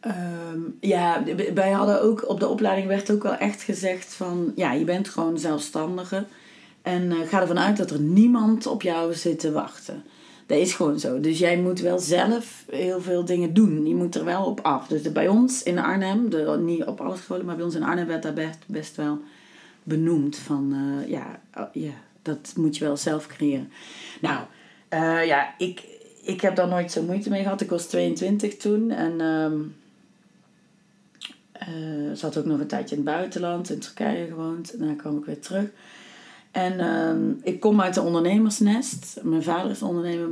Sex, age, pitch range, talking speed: female, 30-49, 155-195 Hz, 195 wpm